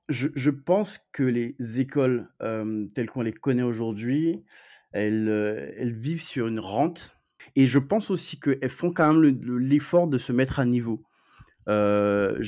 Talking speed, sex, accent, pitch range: 170 wpm, male, French, 115-140 Hz